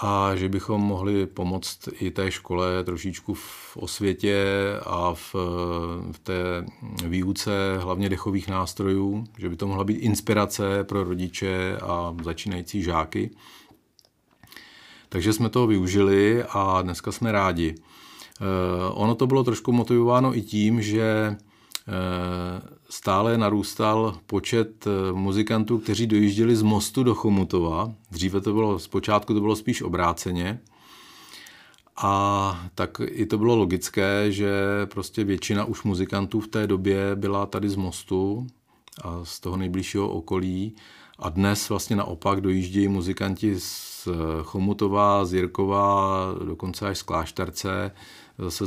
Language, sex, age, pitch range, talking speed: Czech, male, 40-59, 95-105 Hz, 125 wpm